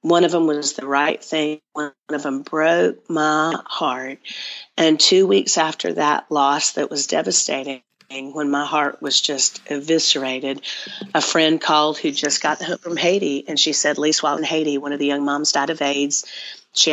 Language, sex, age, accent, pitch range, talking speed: English, female, 40-59, American, 140-155 Hz, 190 wpm